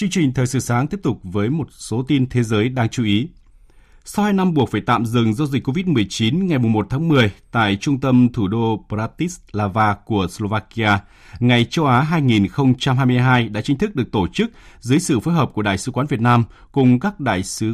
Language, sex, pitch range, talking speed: Vietnamese, male, 105-135 Hz, 210 wpm